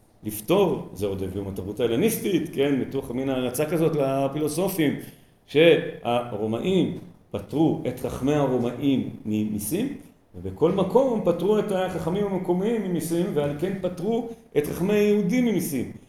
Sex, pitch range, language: male, 105-170 Hz, Hebrew